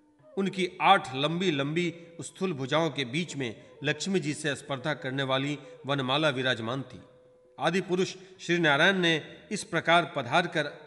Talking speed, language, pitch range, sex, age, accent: 140 wpm, Hindi, 140-185 Hz, male, 40-59, native